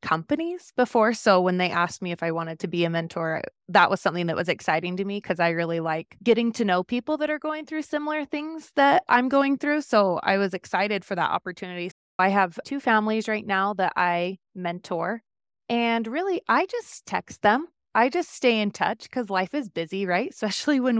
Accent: American